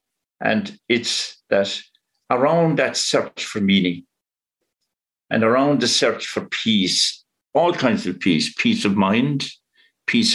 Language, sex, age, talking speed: English, male, 60-79, 130 wpm